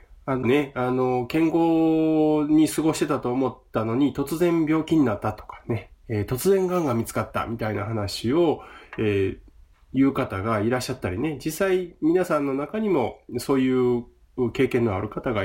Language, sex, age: Japanese, male, 20-39